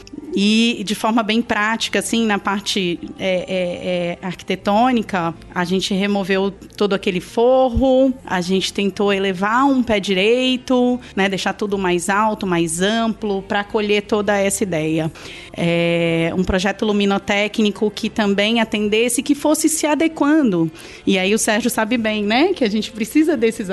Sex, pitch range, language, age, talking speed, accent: female, 195-250 Hz, Portuguese, 30-49, 150 wpm, Brazilian